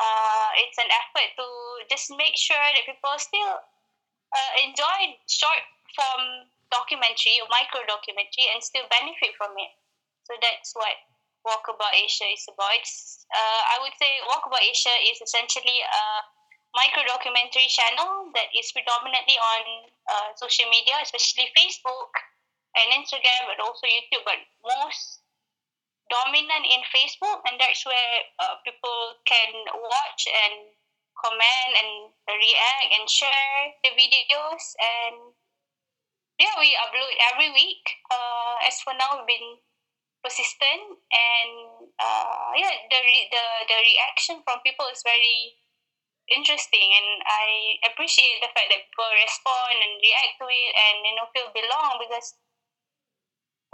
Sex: female